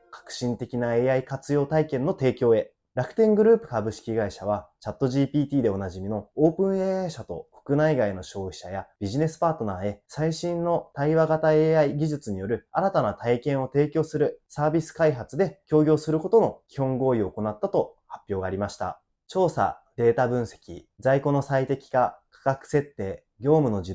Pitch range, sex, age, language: 105-150 Hz, male, 20-39, Japanese